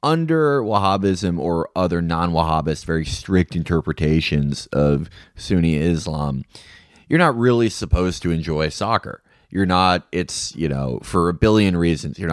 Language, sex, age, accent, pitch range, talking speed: English, male, 30-49, American, 85-110 Hz, 135 wpm